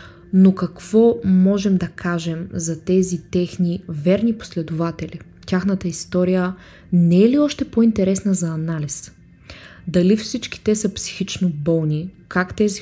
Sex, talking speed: female, 125 wpm